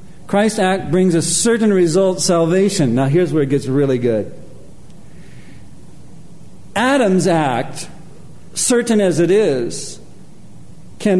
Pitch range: 155-195 Hz